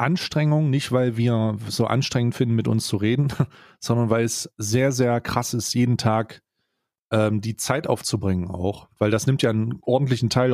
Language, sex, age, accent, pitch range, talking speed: German, male, 30-49, German, 105-130 Hz, 180 wpm